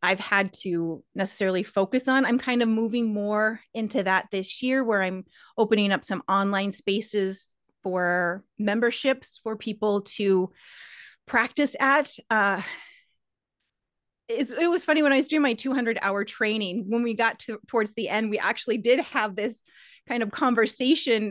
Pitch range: 210-275 Hz